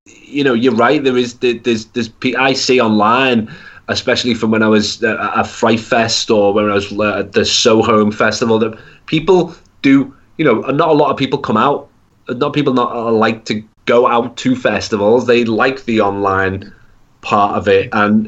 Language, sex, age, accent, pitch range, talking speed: English, male, 20-39, British, 100-115 Hz, 195 wpm